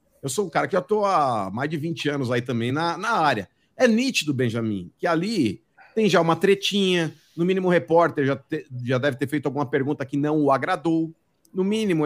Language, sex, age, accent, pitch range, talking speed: Portuguese, male, 50-69, Brazilian, 135-185 Hz, 220 wpm